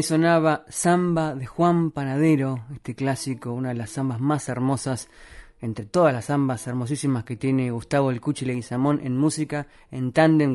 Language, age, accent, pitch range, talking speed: Spanish, 30-49, Argentinian, 130-155 Hz, 165 wpm